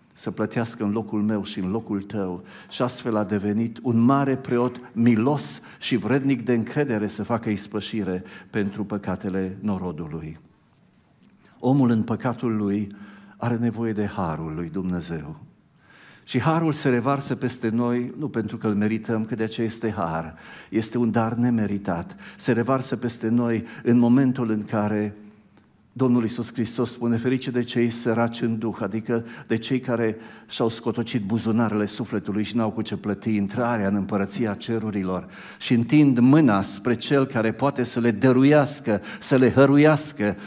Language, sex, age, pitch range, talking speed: Romanian, male, 60-79, 105-125 Hz, 155 wpm